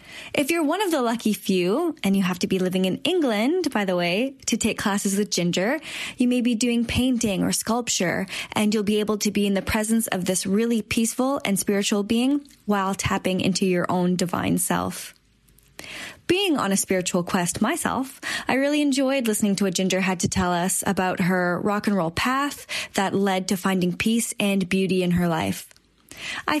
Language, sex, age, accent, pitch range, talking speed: English, female, 10-29, American, 195-255 Hz, 195 wpm